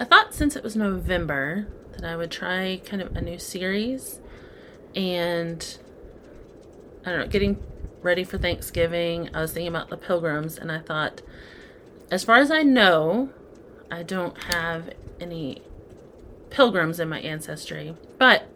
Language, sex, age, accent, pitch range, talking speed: English, female, 30-49, American, 165-215 Hz, 150 wpm